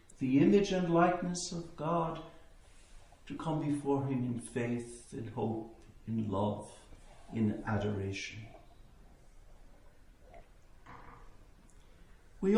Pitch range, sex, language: 105-175 Hz, male, English